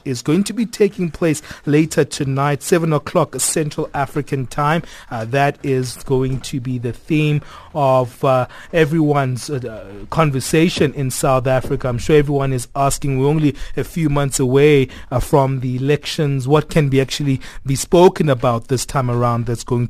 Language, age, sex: English, 30-49, male